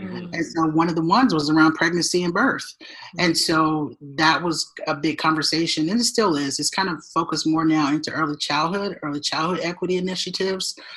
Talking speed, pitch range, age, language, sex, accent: 190 wpm, 150-170 Hz, 30-49, English, male, American